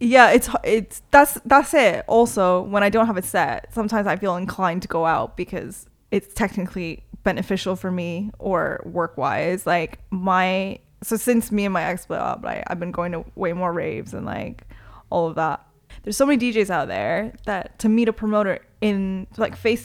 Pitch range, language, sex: 180-220 Hz, English, female